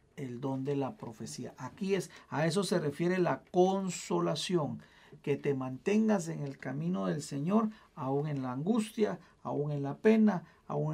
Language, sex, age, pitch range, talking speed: Spanish, male, 50-69, 135-180 Hz, 165 wpm